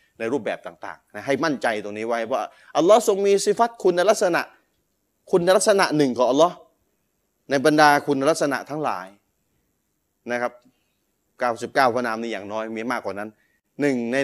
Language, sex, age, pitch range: Thai, male, 20-39, 120-160 Hz